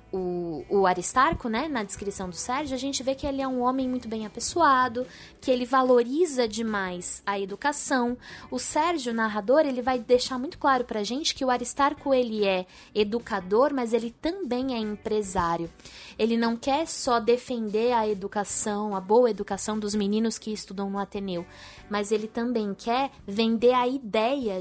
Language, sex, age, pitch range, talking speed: Portuguese, female, 20-39, 210-270 Hz, 170 wpm